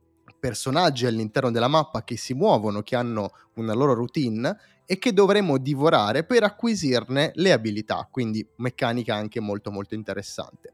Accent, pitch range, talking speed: native, 110-145 Hz, 145 wpm